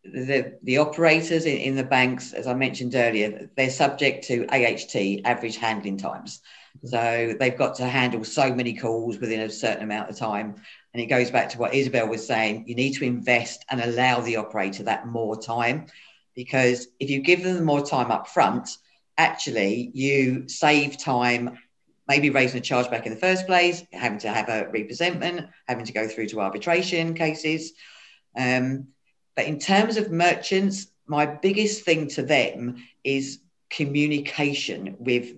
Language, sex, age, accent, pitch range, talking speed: English, female, 50-69, British, 115-145 Hz, 170 wpm